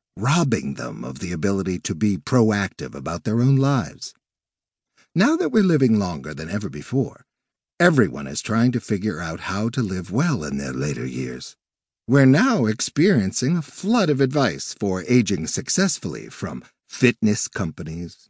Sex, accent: male, American